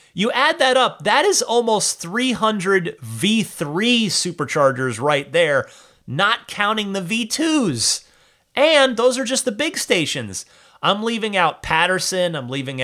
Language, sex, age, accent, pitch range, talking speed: English, male, 30-49, American, 135-205 Hz, 135 wpm